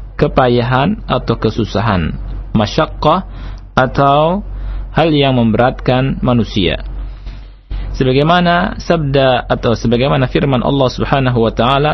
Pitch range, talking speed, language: 110-135 Hz, 90 wpm, Malay